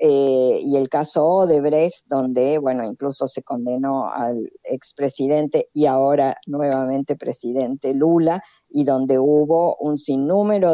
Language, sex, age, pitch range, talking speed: Spanish, female, 50-69, 140-205 Hz, 125 wpm